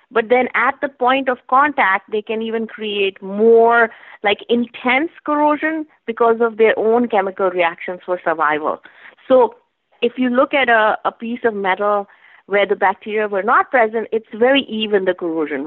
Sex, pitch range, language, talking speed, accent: female, 190-250 Hz, English, 170 wpm, Indian